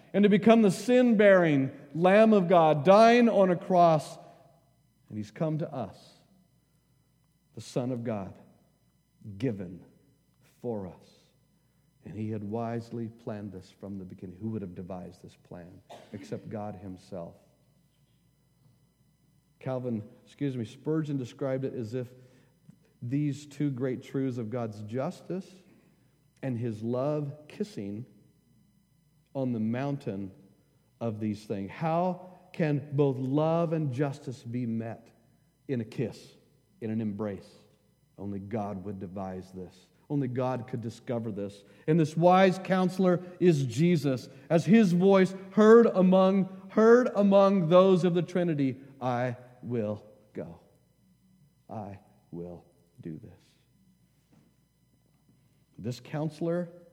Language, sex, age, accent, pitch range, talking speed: English, male, 50-69, American, 115-170 Hz, 125 wpm